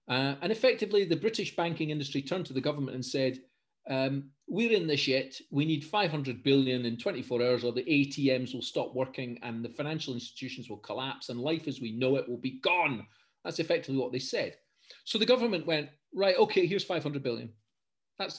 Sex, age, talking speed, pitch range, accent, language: male, 40-59, 200 wpm, 125-155 Hz, British, English